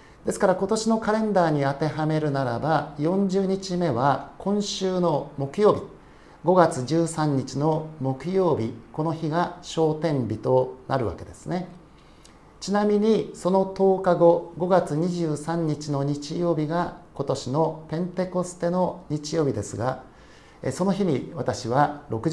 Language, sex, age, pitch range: Japanese, male, 50-69, 130-175 Hz